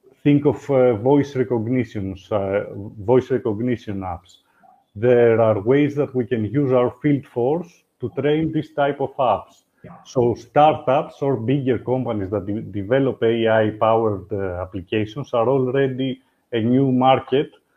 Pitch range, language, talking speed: 110-140 Hz, Greek, 125 wpm